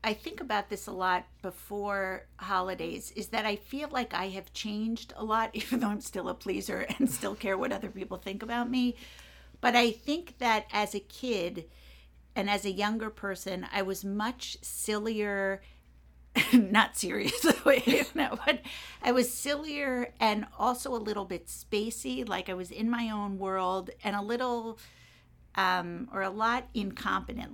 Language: English